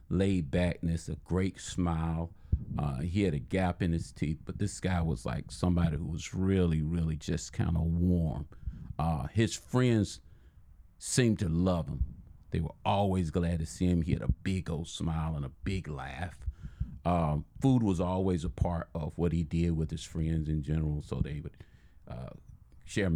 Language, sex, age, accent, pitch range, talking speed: English, male, 40-59, American, 80-95 Hz, 180 wpm